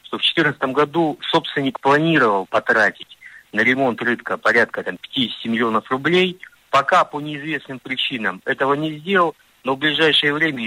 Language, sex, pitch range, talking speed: Russian, male, 120-155 Hz, 140 wpm